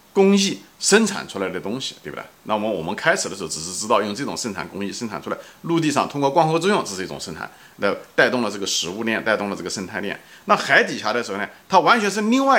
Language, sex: Chinese, male